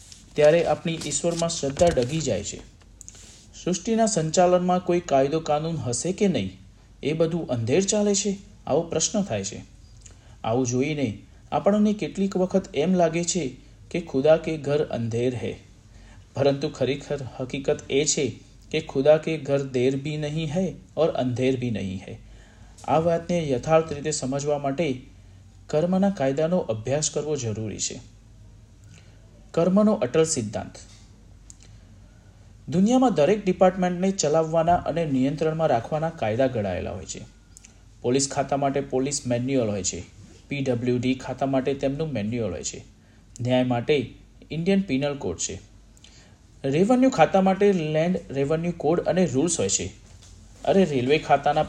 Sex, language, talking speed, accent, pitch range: male, Gujarati, 115 wpm, native, 110-165 Hz